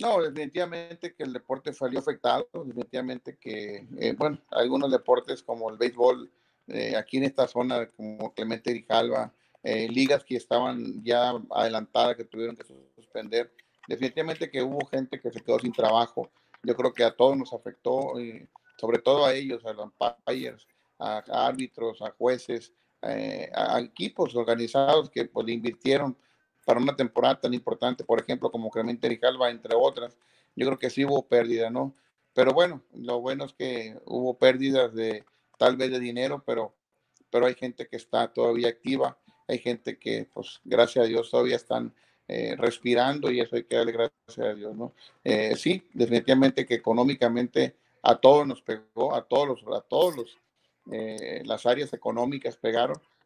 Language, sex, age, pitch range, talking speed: Spanish, male, 40-59, 115-135 Hz, 170 wpm